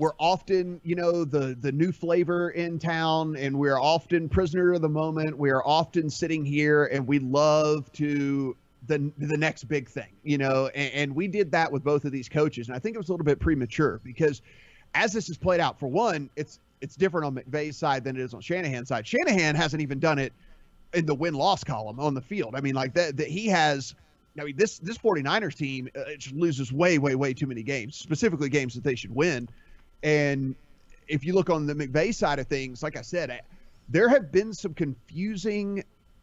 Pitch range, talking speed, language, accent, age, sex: 135-170 Hz, 215 wpm, English, American, 30-49, male